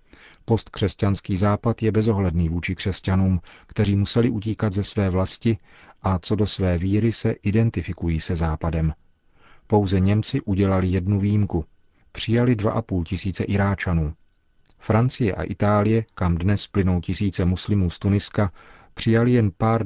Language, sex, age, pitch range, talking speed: Czech, male, 40-59, 90-105 Hz, 135 wpm